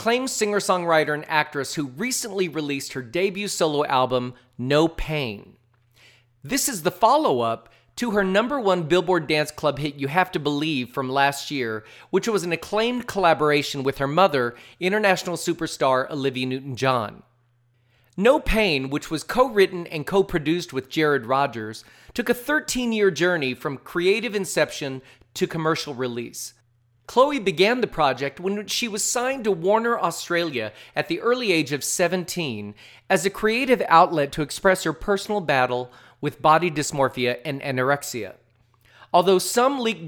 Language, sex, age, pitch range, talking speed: English, male, 40-59, 130-190 Hz, 145 wpm